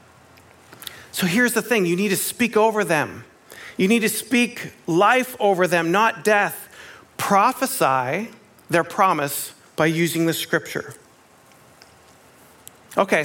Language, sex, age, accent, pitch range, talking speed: English, male, 40-59, American, 165-220 Hz, 120 wpm